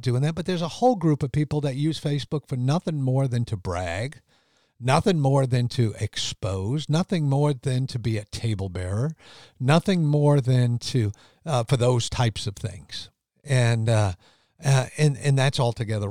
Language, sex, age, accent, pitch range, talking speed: English, male, 50-69, American, 115-150 Hz, 180 wpm